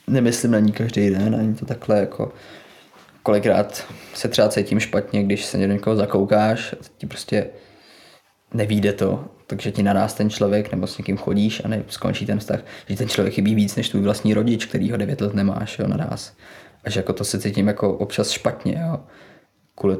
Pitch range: 100-110 Hz